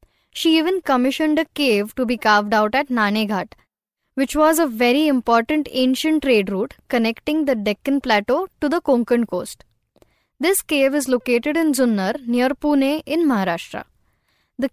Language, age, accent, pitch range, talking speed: Marathi, 10-29, native, 230-305 Hz, 160 wpm